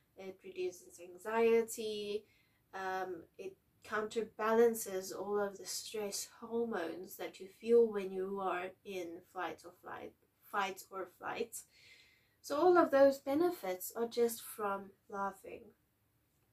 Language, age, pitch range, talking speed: English, 20-39, 190-240 Hz, 115 wpm